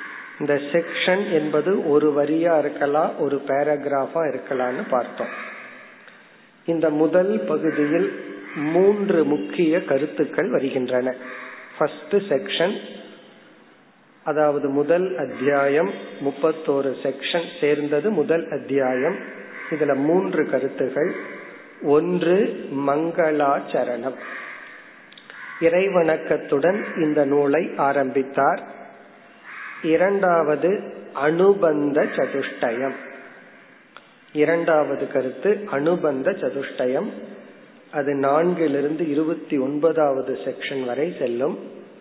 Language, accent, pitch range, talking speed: Tamil, native, 140-170 Hz, 50 wpm